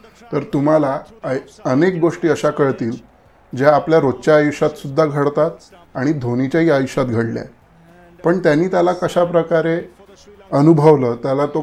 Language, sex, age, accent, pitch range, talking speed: Marathi, male, 30-49, native, 130-155 Hz, 100 wpm